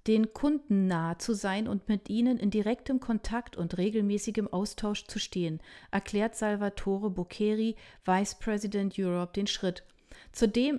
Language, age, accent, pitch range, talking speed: German, 40-59, German, 180-225 Hz, 140 wpm